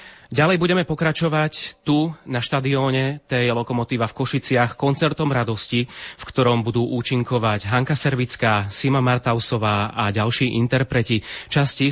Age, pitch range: 30-49, 115-135 Hz